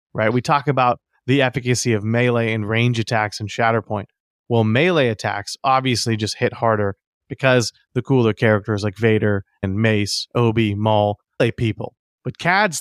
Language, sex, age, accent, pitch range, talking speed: English, male, 30-49, American, 110-130 Hz, 160 wpm